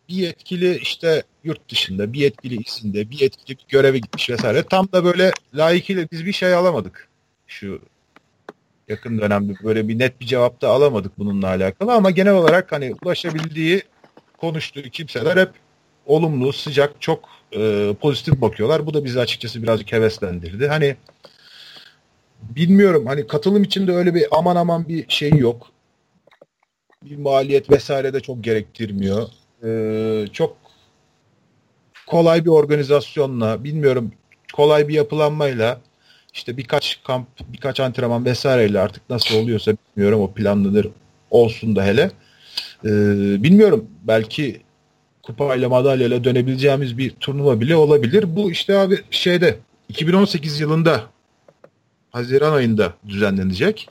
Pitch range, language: 110-165 Hz, Turkish